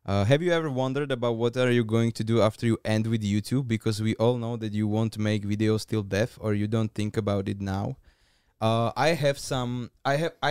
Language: Slovak